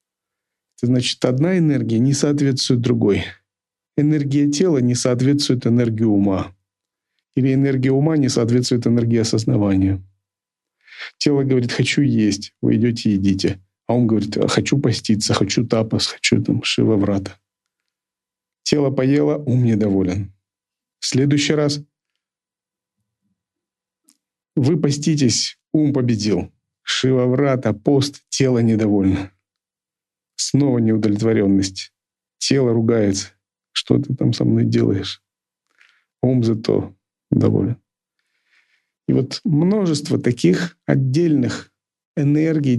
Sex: male